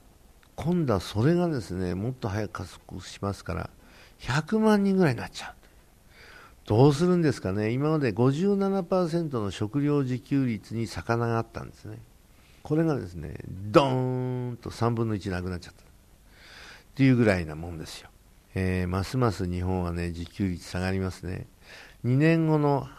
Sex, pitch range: male, 95-125 Hz